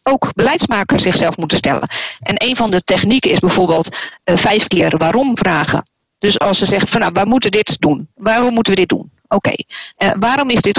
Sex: female